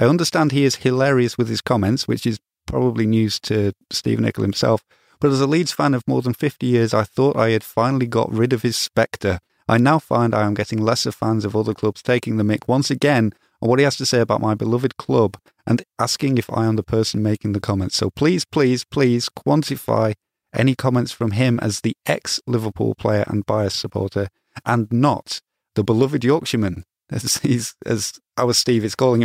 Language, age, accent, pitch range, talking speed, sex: English, 30-49, British, 100-125 Hz, 205 wpm, male